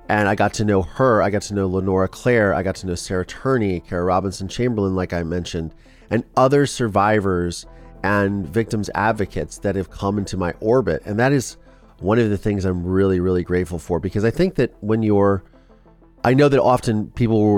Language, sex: English, male